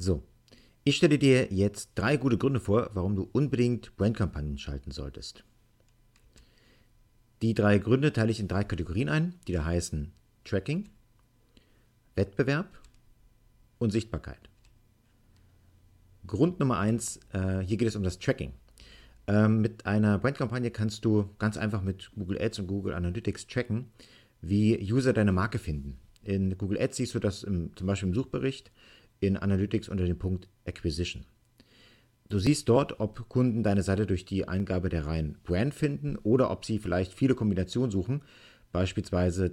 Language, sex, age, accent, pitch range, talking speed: German, male, 50-69, German, 95-115 Hz, 150 wpm